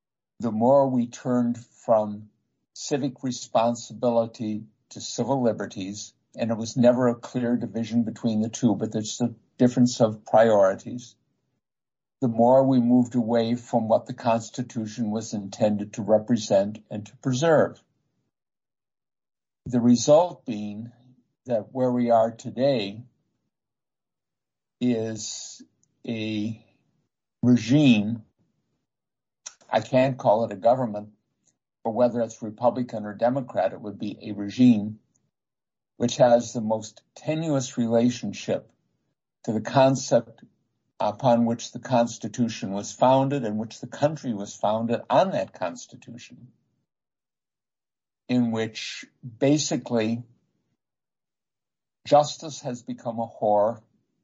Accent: American